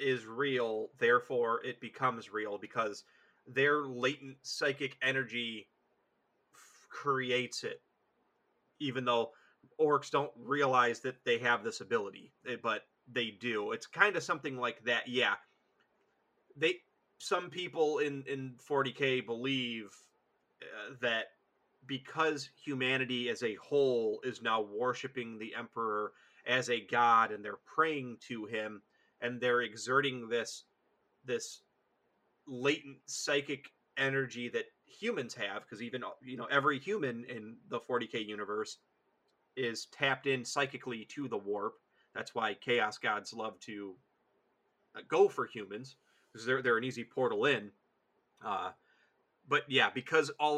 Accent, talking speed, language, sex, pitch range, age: American, 130 wpm, English, male, 120-140 Hz, 30-49